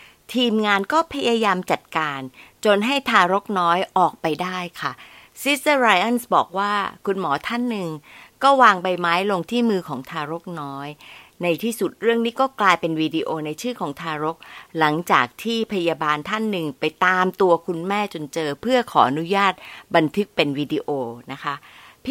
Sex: female